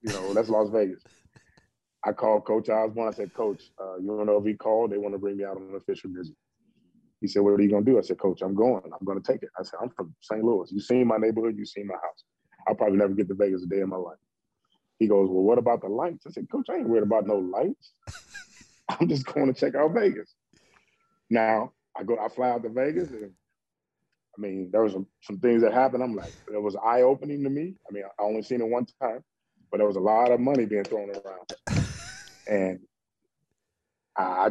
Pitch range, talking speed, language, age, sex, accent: 100-135 Hz, 245 wpm, English, 20-39, male, American